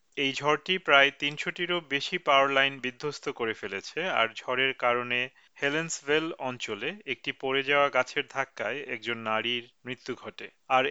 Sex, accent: male, native